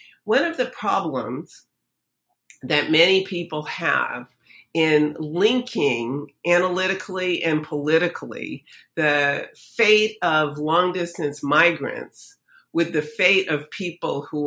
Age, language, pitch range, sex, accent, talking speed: 50-69, English, 145-185 Hz, female, American, 105 wpm